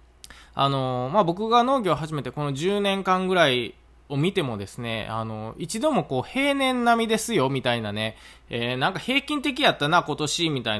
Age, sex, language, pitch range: 20-39, male, Japanese, 120-185 Hz